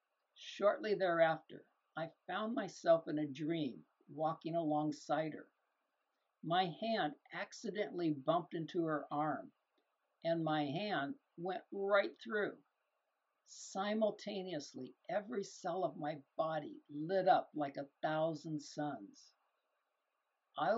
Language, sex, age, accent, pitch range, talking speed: English, male, 60-79, American, 155-205 Hz, 105 wpm